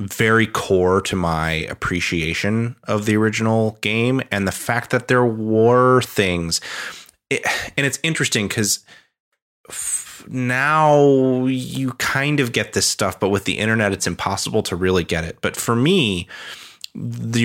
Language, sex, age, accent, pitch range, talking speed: English, male, 30-49, American, 90-115 Hz, 140 wpm